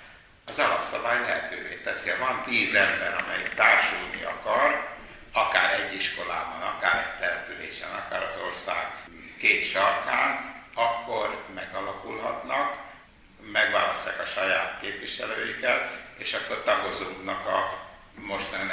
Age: 60-79